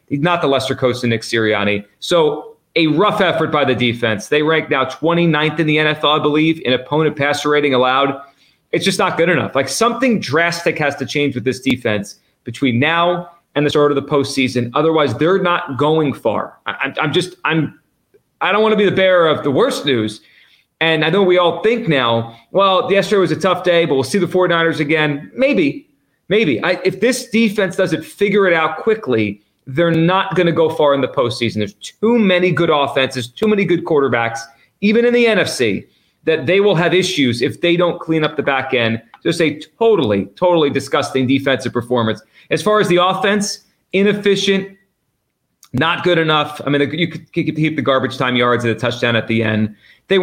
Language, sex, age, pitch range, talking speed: English, male, 30-49, 130-175 Hz, 205 wpm